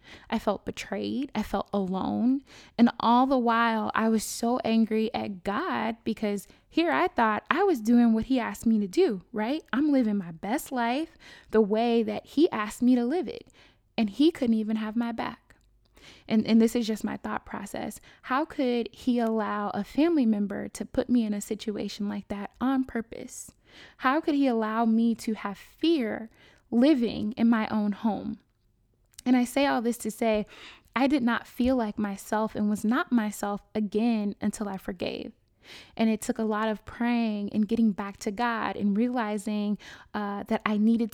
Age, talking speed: 20-39, 185 wpm